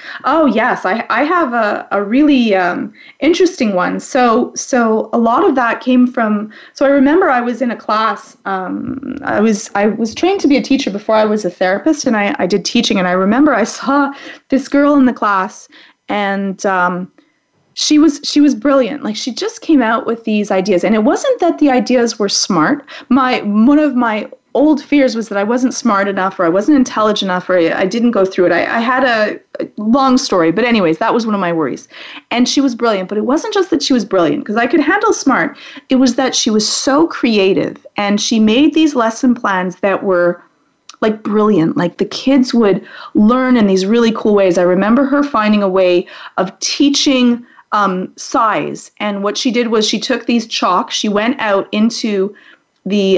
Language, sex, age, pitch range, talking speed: English, female, 30-49, 205-275 Hz, 210 wpm